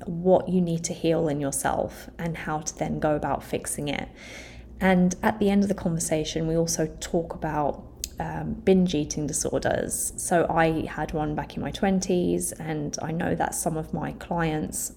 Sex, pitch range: female, 160-195 Hz